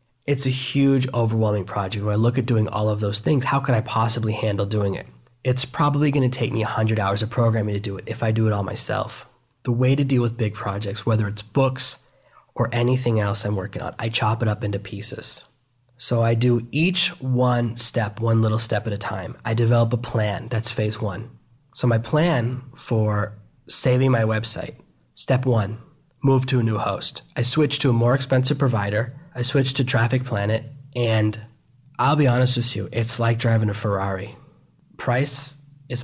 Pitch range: 110-125 Hz